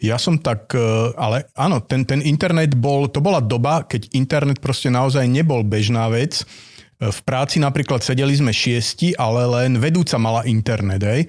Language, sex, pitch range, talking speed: Slovak, male, 115-140 Hz, 160 wpm